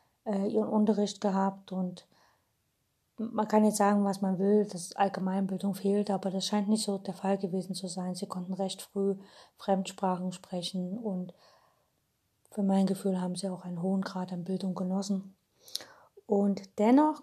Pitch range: 185-205 Hz